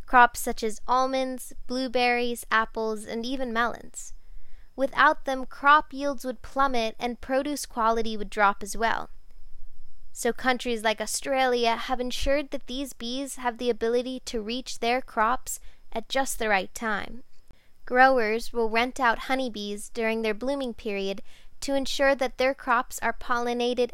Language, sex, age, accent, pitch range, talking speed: English, female, 10-29, American, 225-265 Hz, 150 wpm